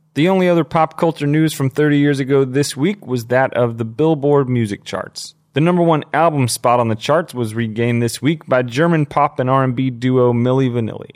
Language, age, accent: English, 30-49, American